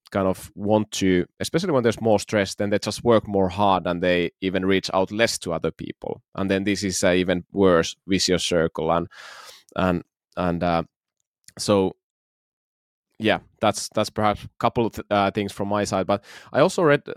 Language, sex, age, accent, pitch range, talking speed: Finnish, male, 20-39, native, 90-105 Hz, 195 wpm